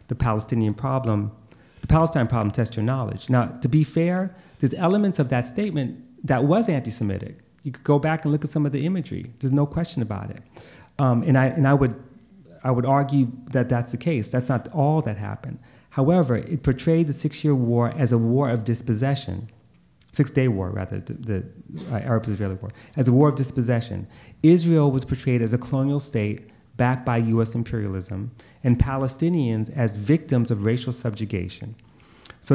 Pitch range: 115-140 Hz